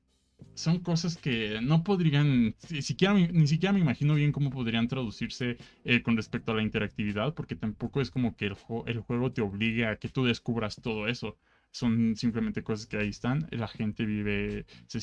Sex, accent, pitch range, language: male, Mexican, 105-125 Hz, Spanish